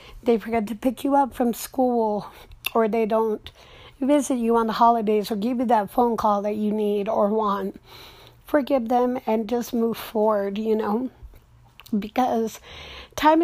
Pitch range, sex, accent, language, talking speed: 210-235 Hz, female, American, English, 165 wpm